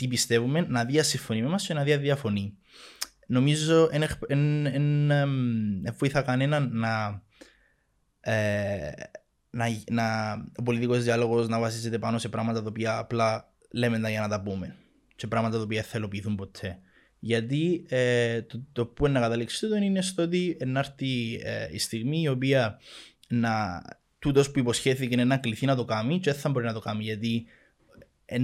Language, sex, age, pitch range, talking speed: Greek, male, 20-39, 115-145 Hz, 155 wpm